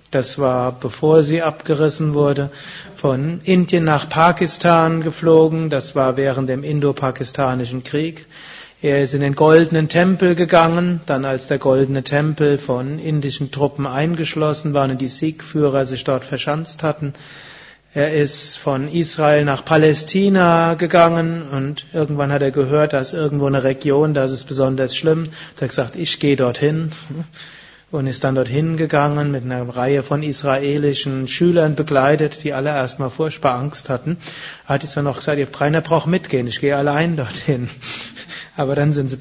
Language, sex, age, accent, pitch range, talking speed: German, male, 30-49, German, 140-165 Hz, 155 wpm